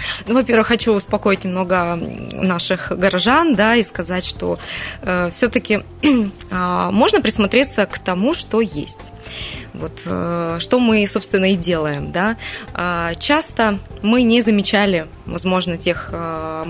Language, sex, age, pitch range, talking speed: Russian, female, 20-39, 170-220 Hz, 135 wpm